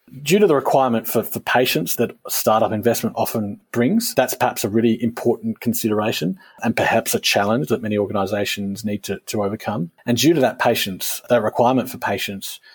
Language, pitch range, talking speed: English, 105-120 Hz, 180 wpm